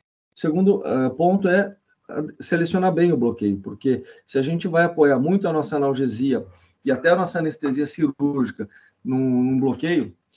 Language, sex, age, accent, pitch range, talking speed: Portuguese, male, 40-59, Brazilian, 120-155 Hz, 155 wpm